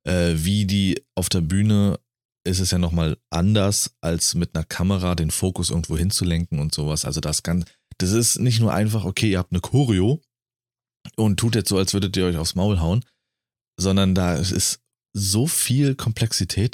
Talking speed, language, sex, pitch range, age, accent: 180 wpm, German, male, 85-115 Hz, 30-49, German